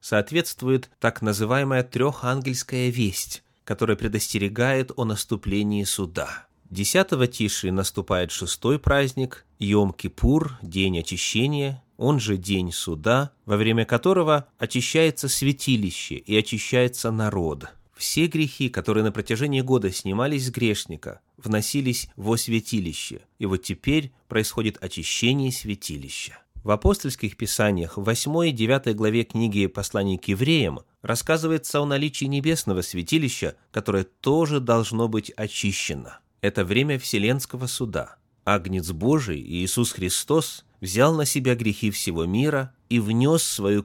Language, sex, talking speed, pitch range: Russian, male, 120 wpm, 100-130 Hz